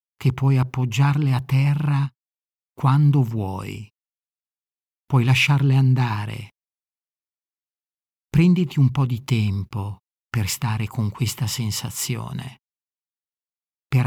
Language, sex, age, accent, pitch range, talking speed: Italian, male, 50-69, native, 110-140 Hz, 90 wpm